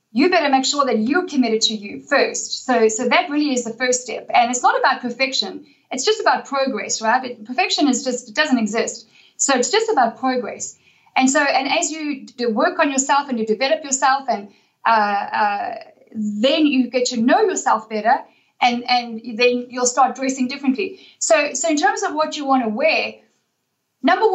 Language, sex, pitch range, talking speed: English, female, 250-320 Hz, 200 wpm